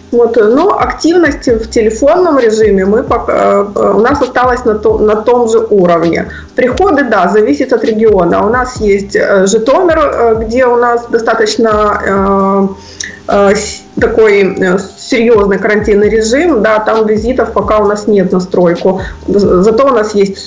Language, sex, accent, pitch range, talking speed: Russian, female, native, 200-235 Hz, 120 wpm